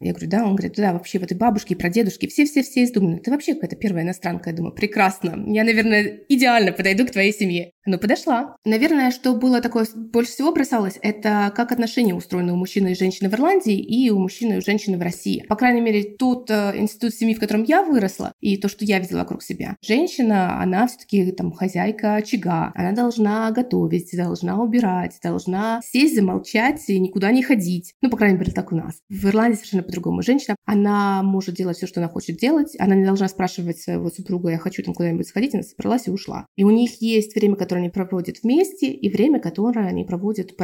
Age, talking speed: 20-39, 215 wpm